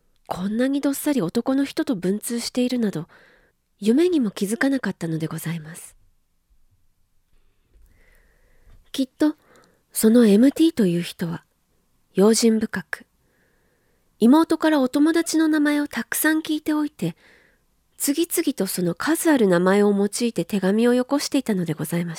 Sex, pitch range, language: female, 180-270 Hz, Japanese